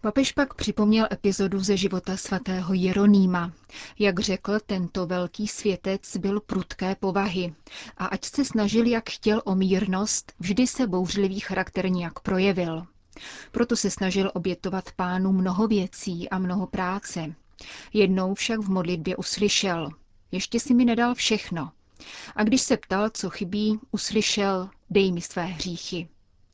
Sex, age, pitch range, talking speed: female, 30-49, 185-215 Hz, 140 wpm